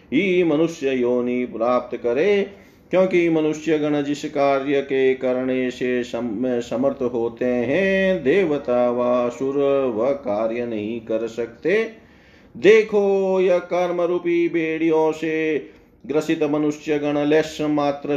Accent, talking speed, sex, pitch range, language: native, 110 wpm, male, 130-155 Hz, Hindi